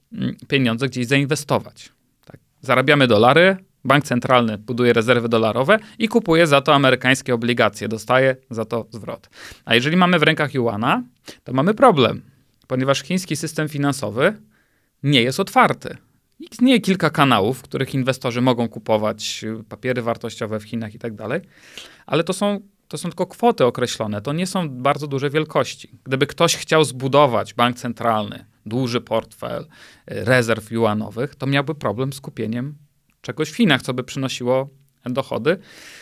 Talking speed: 150 wpm